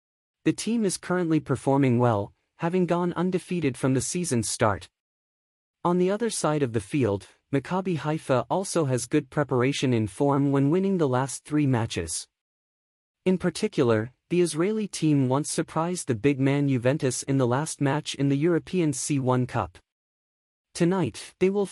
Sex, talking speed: male, 155 wpm